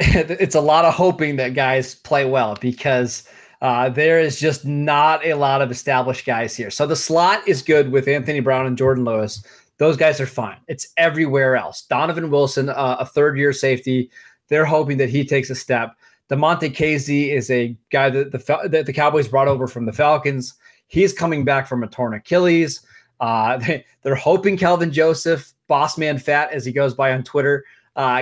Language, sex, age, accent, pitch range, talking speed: English, male, 20-39, American, 130-155 Hz, 185 wpm